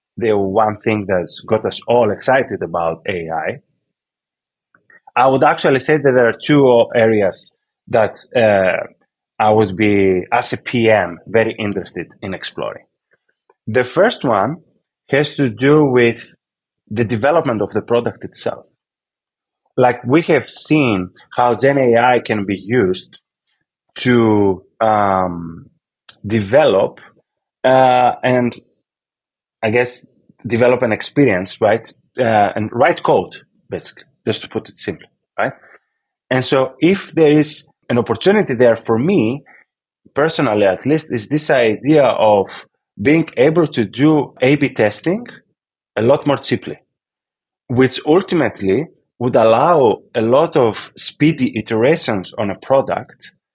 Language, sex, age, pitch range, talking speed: Italian, male, 30-49, 110-140 Hz, 130 wpm